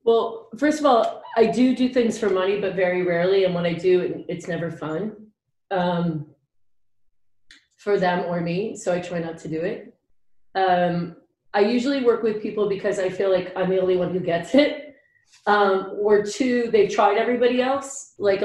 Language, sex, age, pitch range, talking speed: English, female, 30-49, 180-230 Hz, 185 wpm